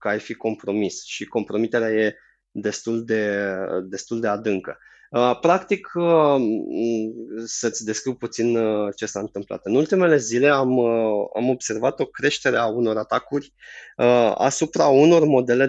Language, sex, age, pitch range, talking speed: Romanian, male, 20-39, 105-135 Hz, 125 wpm